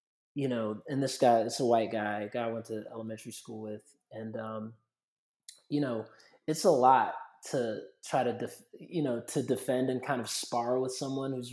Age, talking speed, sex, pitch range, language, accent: 20-39, 205 wpm, male, 115-130 Hz, English, American